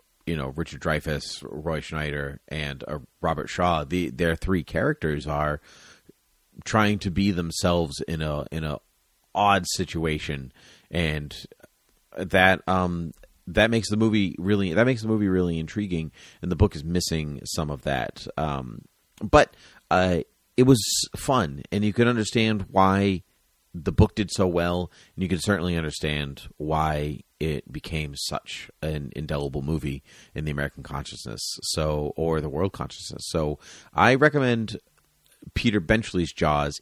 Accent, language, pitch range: American, English, 75-100 Hz